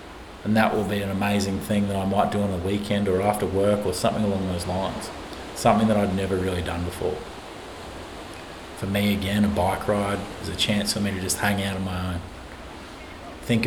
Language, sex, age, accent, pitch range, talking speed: English, male, 30-49, Australian, 95-115 Hz, 210 wpm